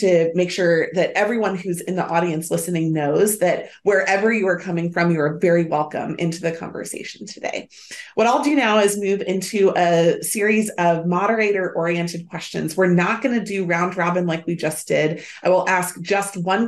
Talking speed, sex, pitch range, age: 185 wpm, female, 165-205 Hz, 30-49